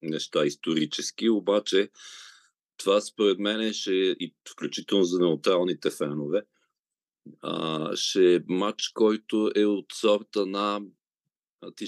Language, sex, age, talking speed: Bulgarian, male, 40-59, 120 wpm